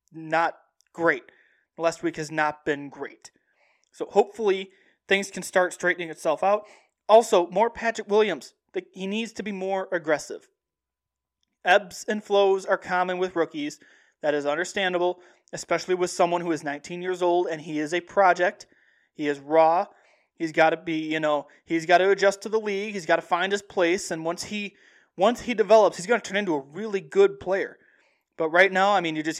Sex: male